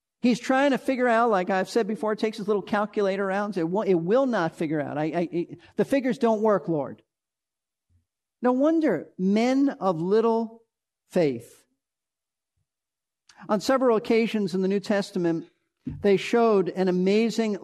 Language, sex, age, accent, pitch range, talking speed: English, male, 50-69, American, 175-230 Hz, 155 wpm